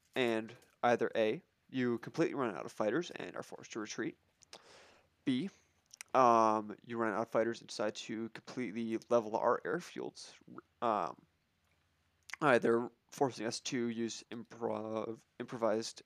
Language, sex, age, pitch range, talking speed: English, male, 20-39, 110-125 Hz, 135 wpm